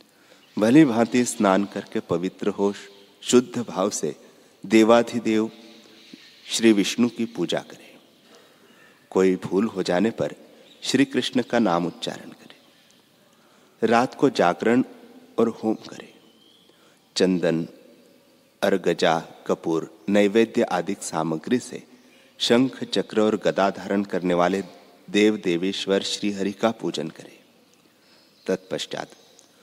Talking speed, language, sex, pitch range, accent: 110 wpm, Hindi, male, 95-120 Hz, native